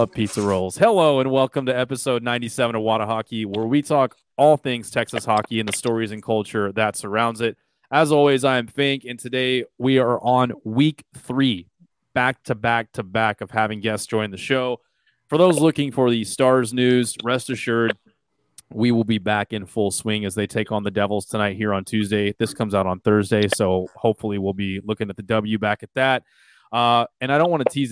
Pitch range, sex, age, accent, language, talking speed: 105-125 Hz, male, 30-49, American, English, 210 wpm